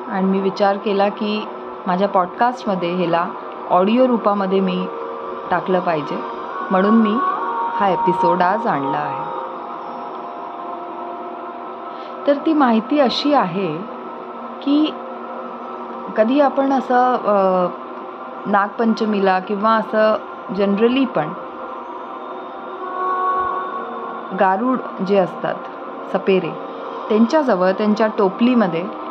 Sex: female